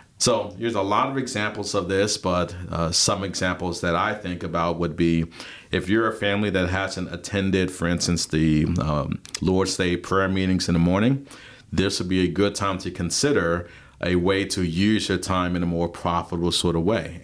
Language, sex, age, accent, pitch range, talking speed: English, male, 40-59, American, 85-100 Hz, 200 wpm